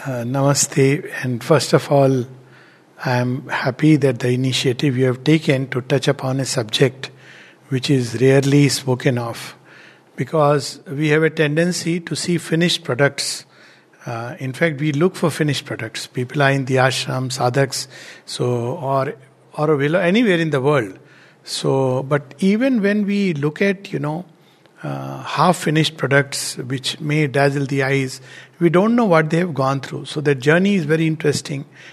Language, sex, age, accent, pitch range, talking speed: English, male, 60-79, Indian, 135-160 Hz, 160 wpm